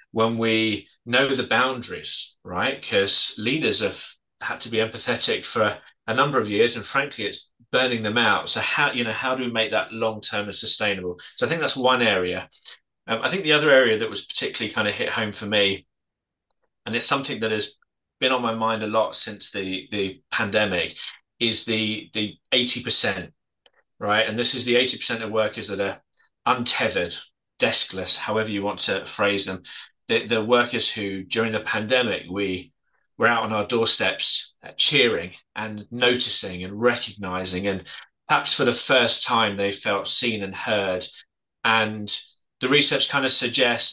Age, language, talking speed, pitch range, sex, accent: 30-49, English, 180 wpm, 100-120 Hz, male, British